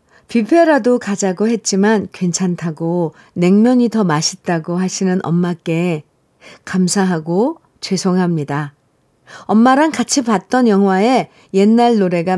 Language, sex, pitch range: Korean, female, 165-230 Hz